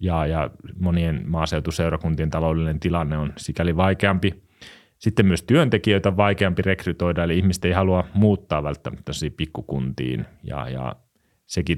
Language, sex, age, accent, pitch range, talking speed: Finnish, male, 30-49, native, 85-115 Hz, 130 wpm